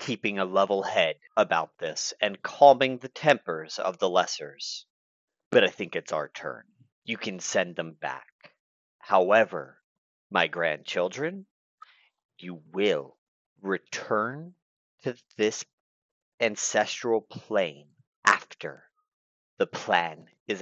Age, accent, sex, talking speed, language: 40-59, American, male, 110 wpm, English